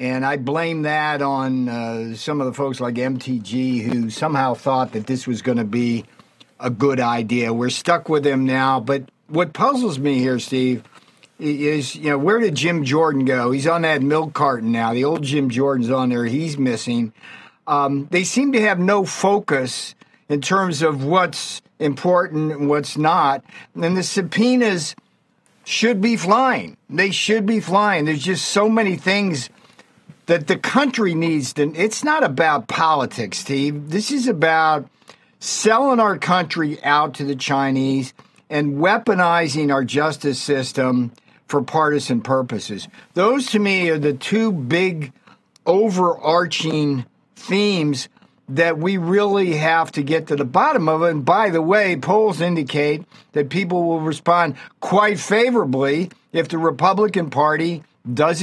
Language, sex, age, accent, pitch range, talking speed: English, male, 50-69, American, 135-185 Hz, 155 wpm